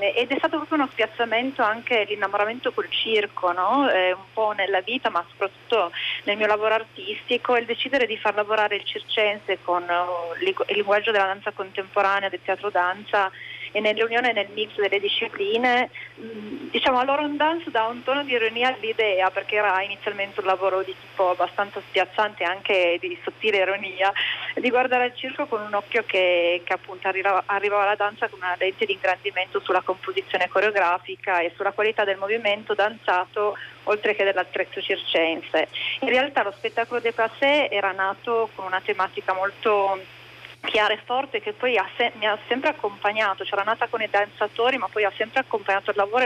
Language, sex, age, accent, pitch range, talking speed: Italian, female, 40-59, native, 195-235 Hz, 170 wpm